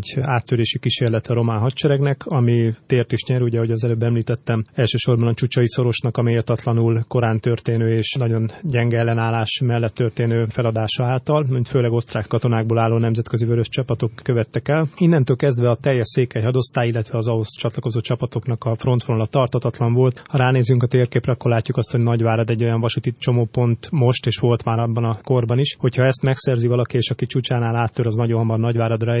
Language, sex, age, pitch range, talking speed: Hungarian, male, 30-49, 115-130 Hz, 180 wpm